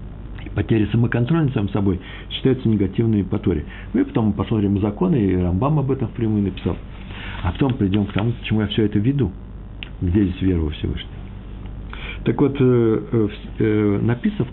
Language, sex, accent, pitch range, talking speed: Russian, male, native, 95-120 Hz, 155 wpm